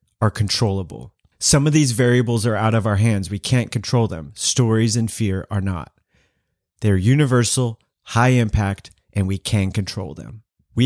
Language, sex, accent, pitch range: English, male, American, 100-125 Hz